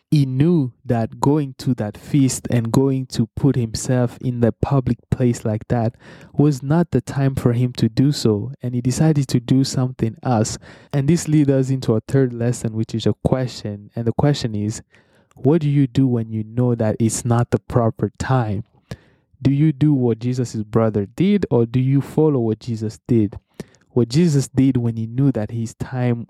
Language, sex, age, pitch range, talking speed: English, male, 20-39, 115-135 Hz, 195 wpm